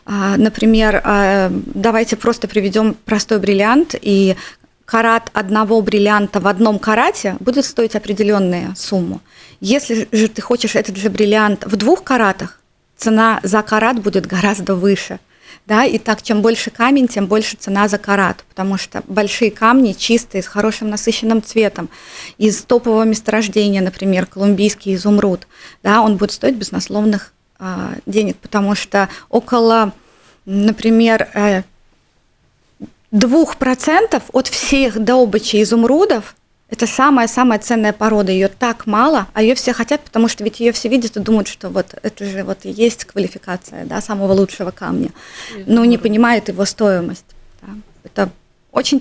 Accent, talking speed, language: native, 130 wpm, Russian